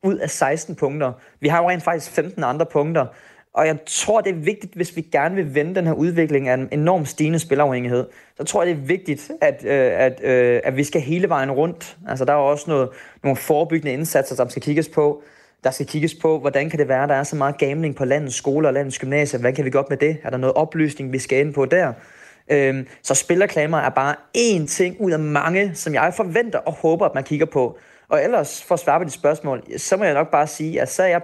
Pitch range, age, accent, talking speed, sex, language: 135-160 Hz, 30-49, native, 250 wpm, male, Danish